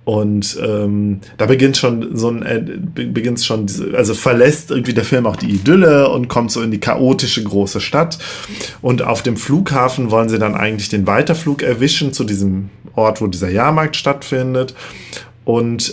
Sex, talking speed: male, 175 wpm